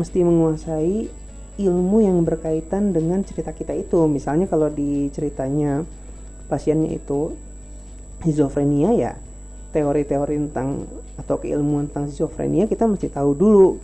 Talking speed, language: 115 wpm, Indonesian